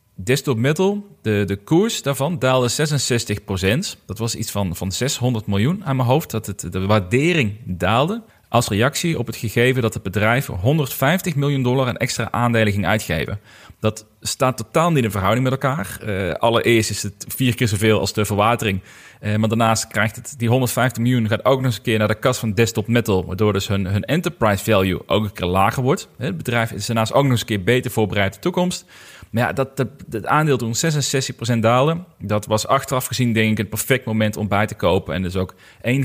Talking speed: 210 wpm